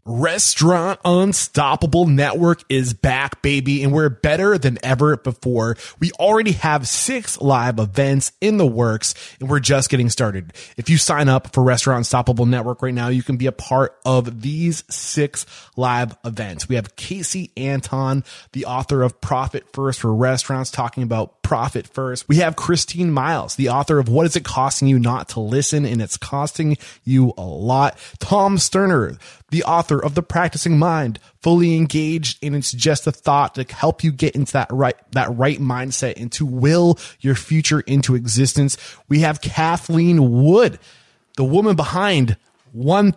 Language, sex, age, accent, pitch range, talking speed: English, male, 20-39, American, 125-155 Hz, 170 wpm